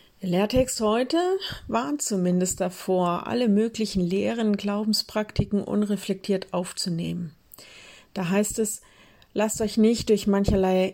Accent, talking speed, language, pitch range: German, 110 wpm, German, 180-215 Hz